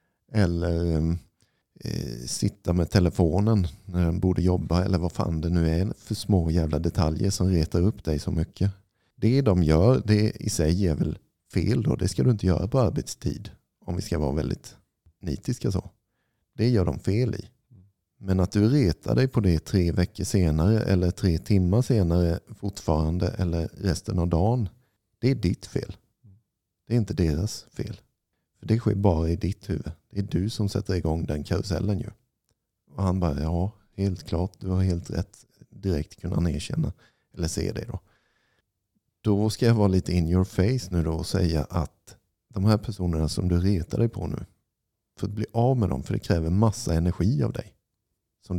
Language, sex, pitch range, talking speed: Swedish, male, 85-110 Hz, 185 wpm